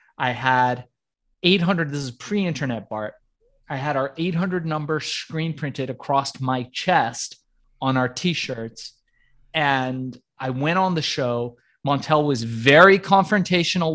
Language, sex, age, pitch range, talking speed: English, male, 30-49, 135-170 Hz, 130 wpm